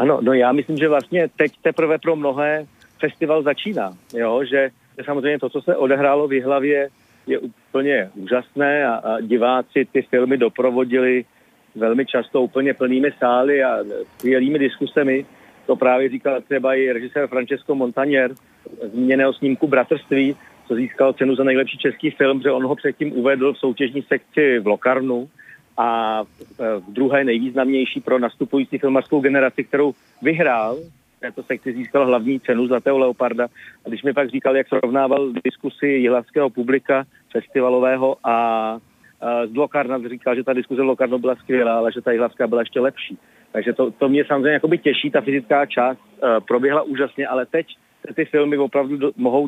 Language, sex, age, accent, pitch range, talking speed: Czech, male, 50-69, native, 125-140 Hz, 160 wpm